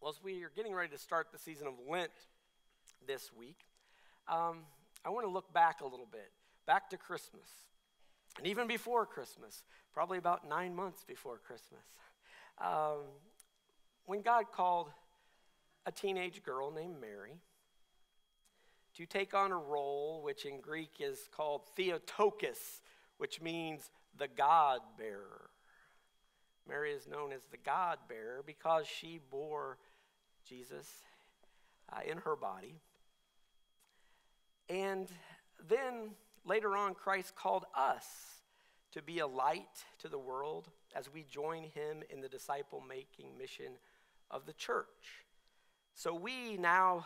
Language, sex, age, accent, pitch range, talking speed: English, male, 50-69, American, 160-240 Hz, 130 wpm